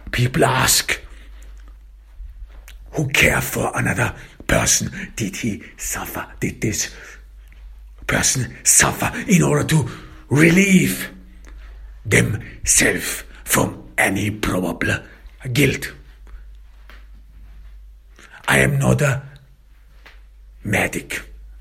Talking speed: 80 wpm